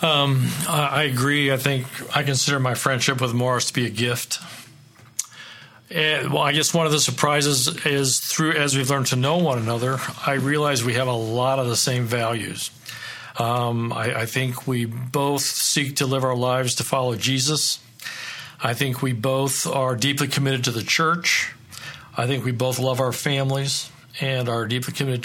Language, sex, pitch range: English, male, 125-145 Hz